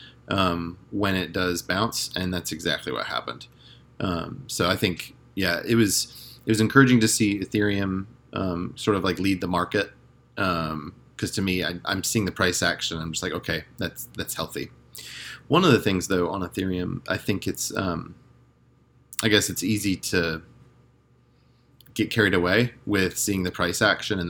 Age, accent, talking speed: 30-49, American, 175 wpm